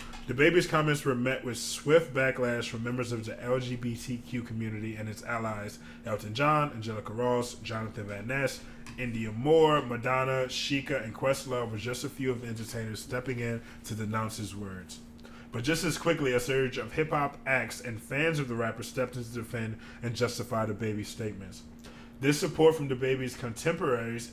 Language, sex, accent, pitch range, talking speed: English, male, American, 115-130 Hz, 180 wpm